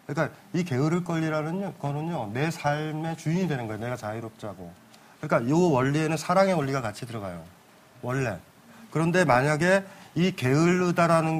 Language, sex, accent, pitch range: Korean, male, native, 135-180 Hz